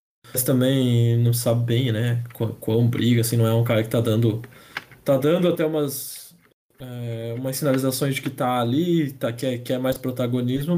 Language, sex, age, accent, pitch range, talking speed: Portuguese, male, 20-39, Brazilian, 115-130 Hz, 195 wpm